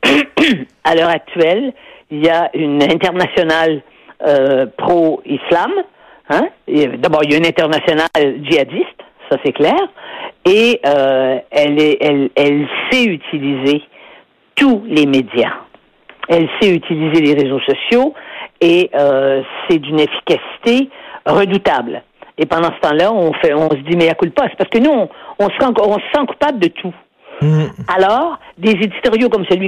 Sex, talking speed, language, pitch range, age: female, 140 wpm, French, 160-230 Hz, 50-69